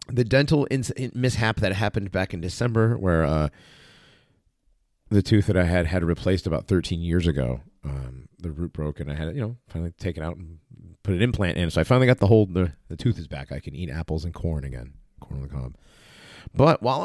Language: English